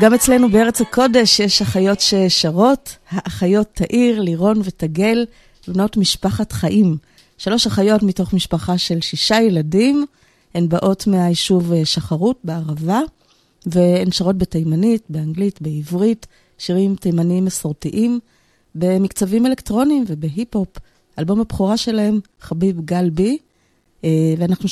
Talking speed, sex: 105 wpm, female